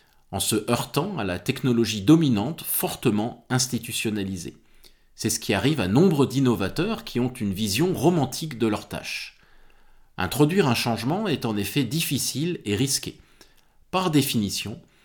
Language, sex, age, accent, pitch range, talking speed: French, male, 40-59, French, 105-150 Hz, 140 wpm